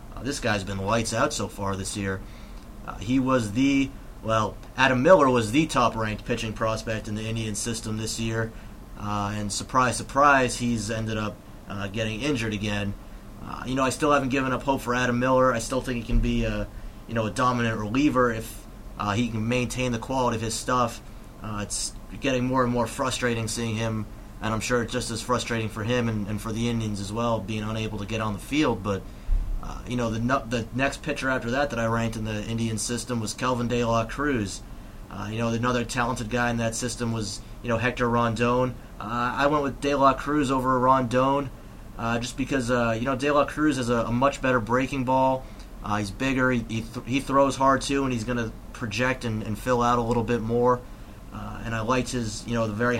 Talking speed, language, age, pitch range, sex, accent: 220 wpm, English, 30-49, 110-125 Hz, male, American